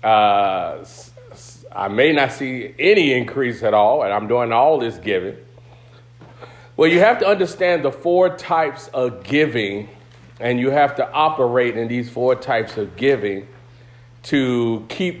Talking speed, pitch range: 150 wpm, 120-140 Hz